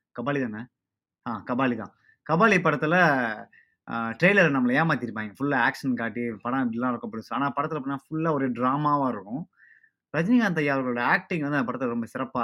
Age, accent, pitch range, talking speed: 20-39, native, 130-170 Hz, 150 wpm